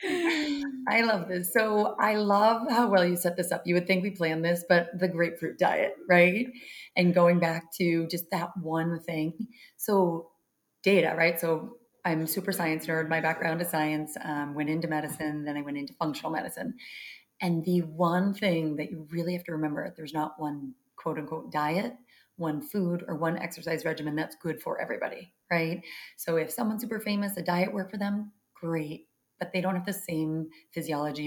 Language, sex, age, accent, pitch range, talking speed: English, female, 30-49, American, 160-195 Hz, 190 wpm